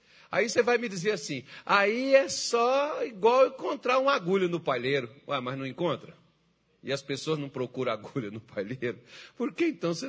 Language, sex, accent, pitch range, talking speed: Portuguese, male, Brazilian, 125-185 Hz, 185 wpm